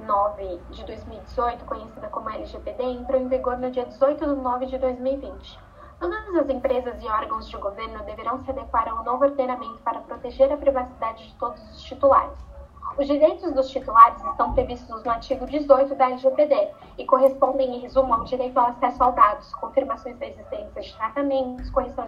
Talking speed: 175 wpm